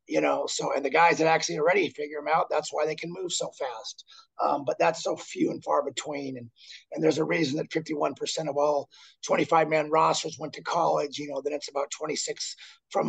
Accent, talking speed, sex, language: American, 230 wpm, male, English